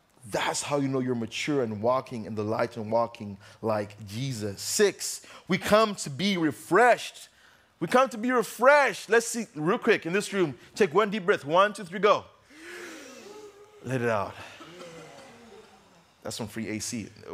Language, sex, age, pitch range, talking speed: English, male, 20-39, 120-195 Hz, 170 wpm